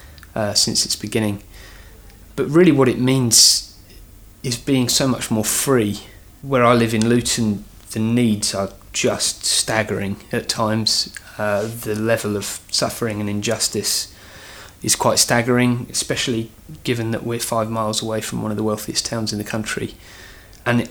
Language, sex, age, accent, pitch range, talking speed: English, male, 20-39, British, 100-115 Hz, 155 wpm